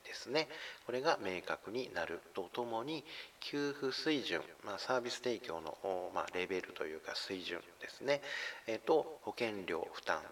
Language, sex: Japanese, male